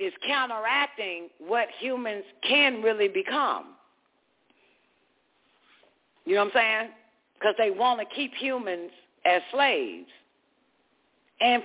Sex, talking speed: female, 110 wpm